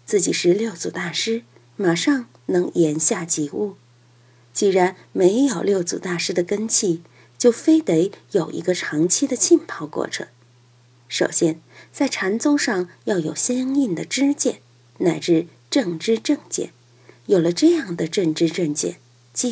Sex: female